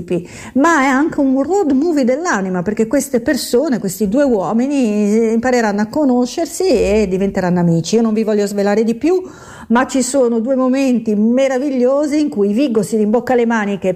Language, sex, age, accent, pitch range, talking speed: Italian, female, 50-69, native, 200-250 Hz, 170 wpm